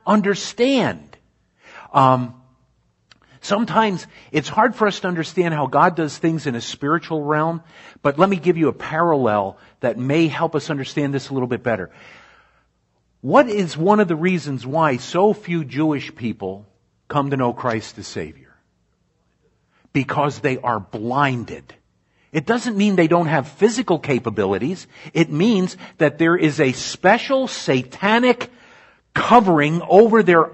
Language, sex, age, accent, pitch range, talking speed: Italian, male, 50-69, American, 140-200 Hz, 145 wpm